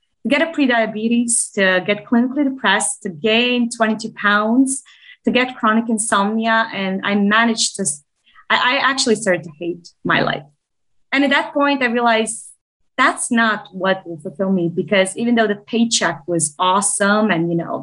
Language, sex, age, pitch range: English, female, 20-39, 185-235 Hz